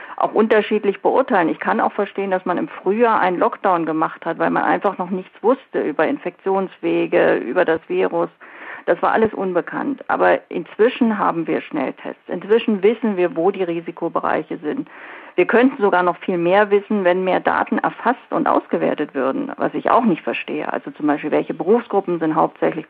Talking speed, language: 180 wpm, German